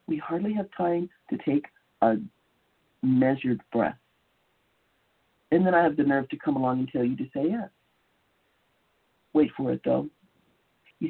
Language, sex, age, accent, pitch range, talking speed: English, male, 50-69, American, 130-190 Hz, 155 wpm